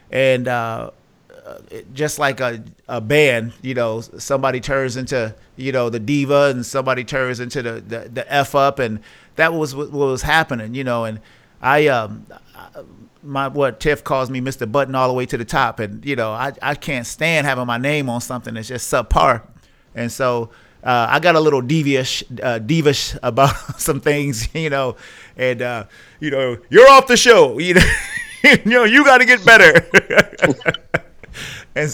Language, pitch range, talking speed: English, 120-155 Hz, 185 wpm